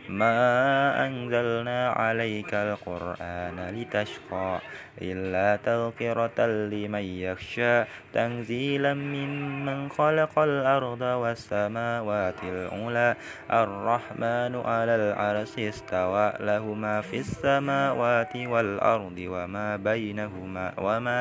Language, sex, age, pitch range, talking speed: Indonesian, male, 20-39, 105-125 Hz, 75 wpm